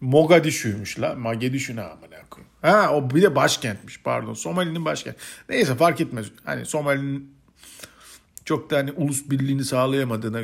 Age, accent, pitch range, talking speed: 50-69, native, 105-145 Hz, 130 wpm